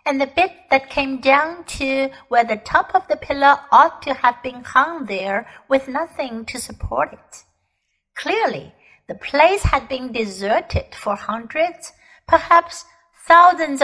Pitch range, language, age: 235-315 Hz, Chinese, 60-79